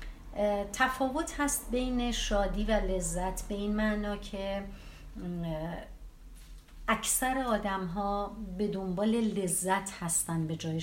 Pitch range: 175-210 Hz